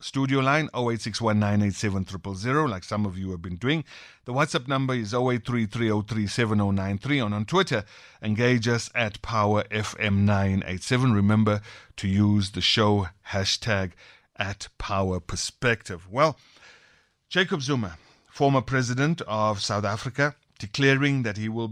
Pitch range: 100-120 Hz